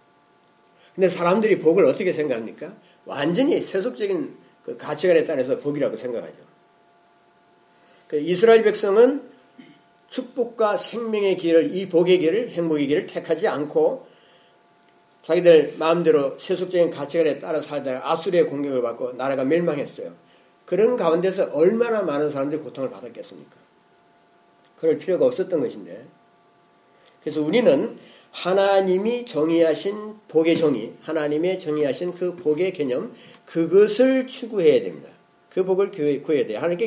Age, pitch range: 40-59, 155-235 Hz